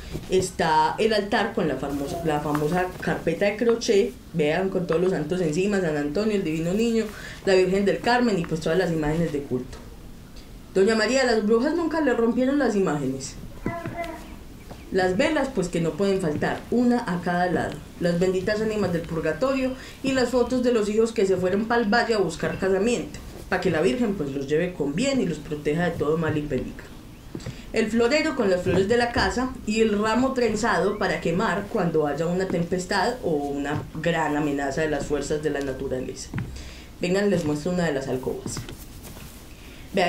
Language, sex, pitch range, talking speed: Spanish, female, 160-230 Hz, 185 wpm